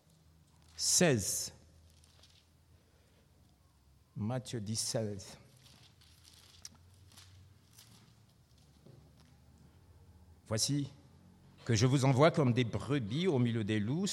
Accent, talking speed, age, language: French, 70 wpm, 60-79, French